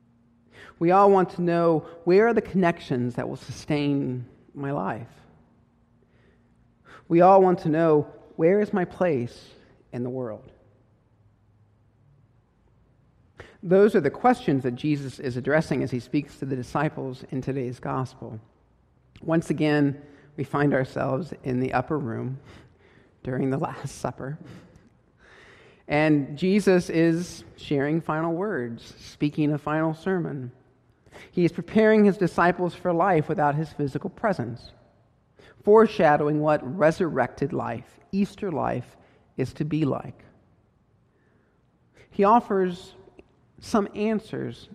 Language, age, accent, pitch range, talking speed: English, 50-69, American, 125-165 Hz, 120 wpm